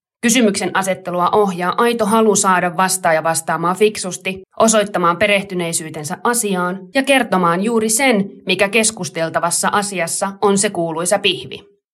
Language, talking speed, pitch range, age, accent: Finnish, 115 wpm, 180-225 Hz, 30-49, native